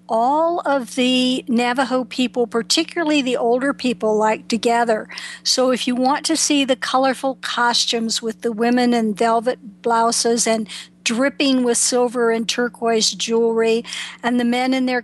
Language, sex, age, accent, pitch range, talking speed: English, female, 50-69, American, 225-255 Hz, 155 wpm